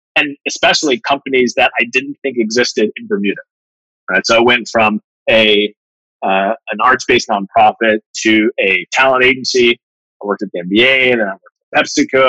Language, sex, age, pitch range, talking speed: English, male, 30-49, 110-130 Hz, 165 wpm